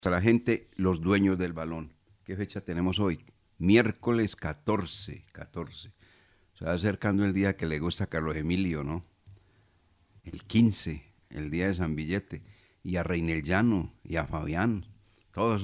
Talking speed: 155 wpm